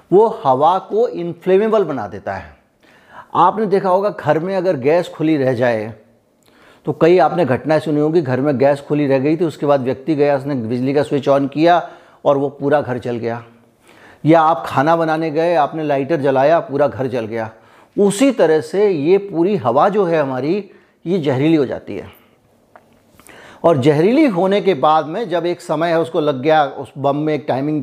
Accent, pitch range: native, 135-175 Hz